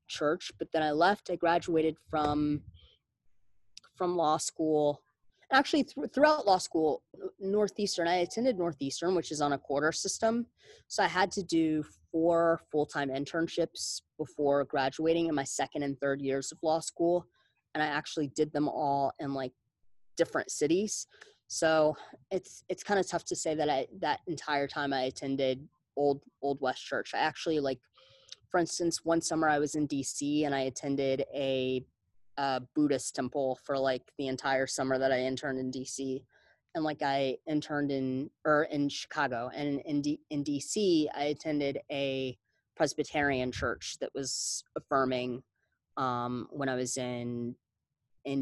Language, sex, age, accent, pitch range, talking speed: English, female, 20-39, American, 130-160 Hz, 160 wpm